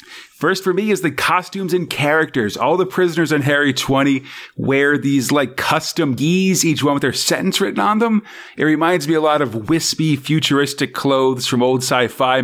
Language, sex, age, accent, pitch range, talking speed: English, male, 30-49, American, 140-180 Hz, 190 wpm